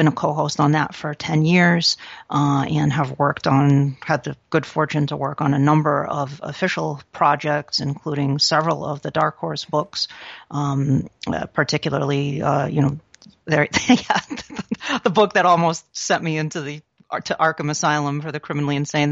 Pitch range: 145-160 Hz